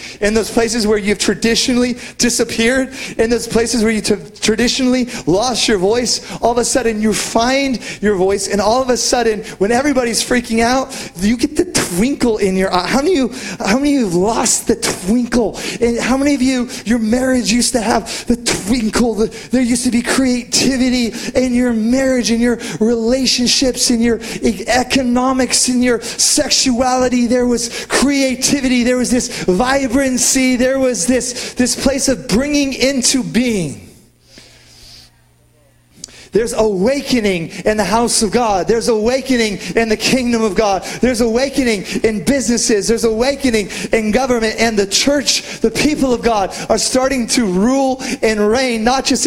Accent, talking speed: American, 165 wpm